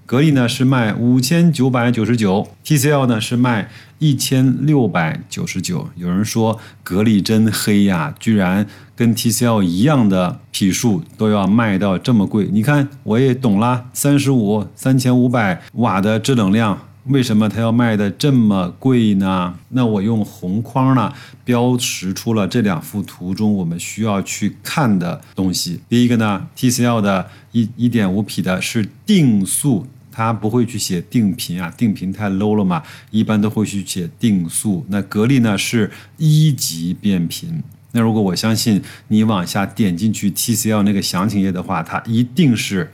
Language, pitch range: Chinese, 100-125 Hz